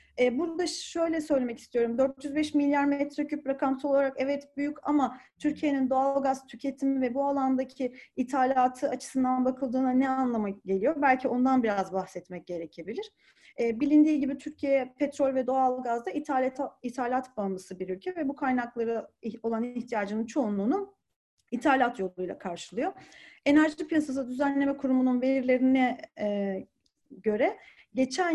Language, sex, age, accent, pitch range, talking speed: Turkish, female, 30-49, native, 245-295 Hz, 120 wpm